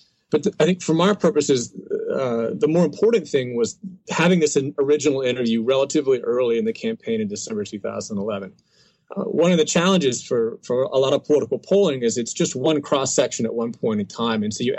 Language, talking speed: English, 200 wpm